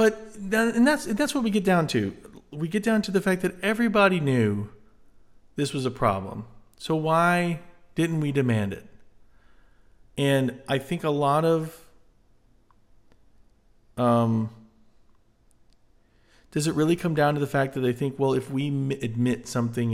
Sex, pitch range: male, 105-135 Hz